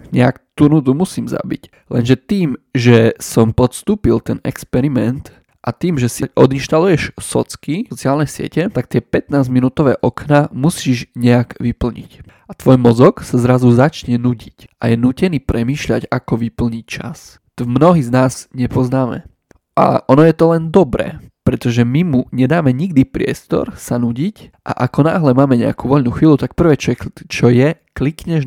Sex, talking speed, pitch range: male, 160 wpm, 120-145 Hz